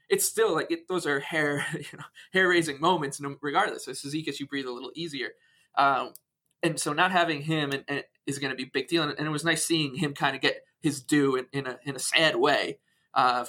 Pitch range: 140-175 Hz